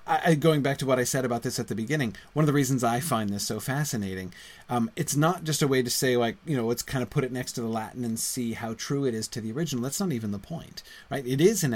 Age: 30-49